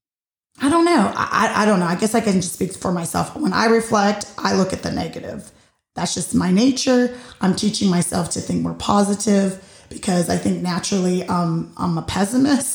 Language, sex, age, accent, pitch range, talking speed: English, female, 20-39, American, 175-205 Hz, 200 wpm